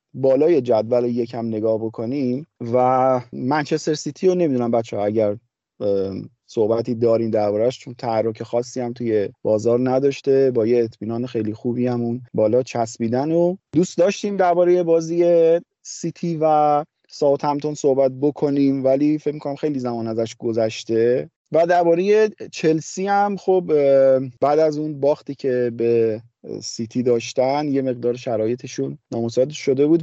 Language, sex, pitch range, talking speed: Persian, male, 115-150 Hz, 140 wpm